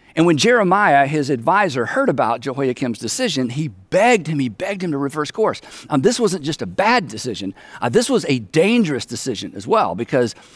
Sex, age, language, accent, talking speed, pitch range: male, 50-69, English, American, 195 wpm, 140-205 Hz